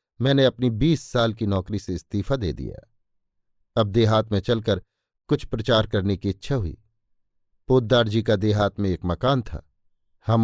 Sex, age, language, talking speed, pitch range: male, 50-69, Hindi, 160 wpm, 100-130 Hz